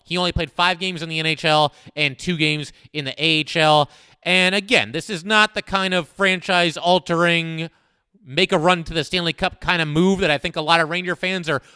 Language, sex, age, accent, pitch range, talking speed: English, male, 30-49, American, 155-185 Hz, 190 wpm